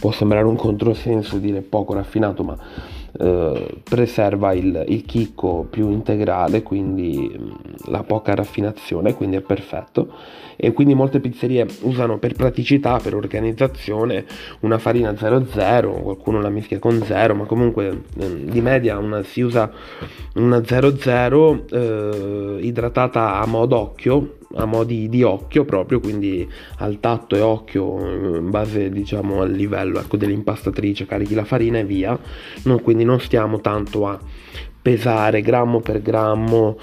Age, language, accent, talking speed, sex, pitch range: 30-49, Italian, native, 135 wpm, male, 105-120 Hz